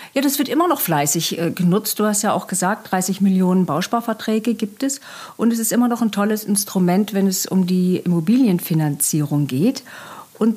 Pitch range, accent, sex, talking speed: 180-235 Hz, German, female, 180 wpm